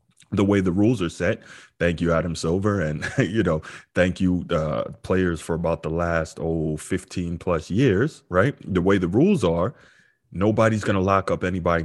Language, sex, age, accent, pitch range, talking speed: English, male, 30-49, American, 85-110 Hz, 185 wpm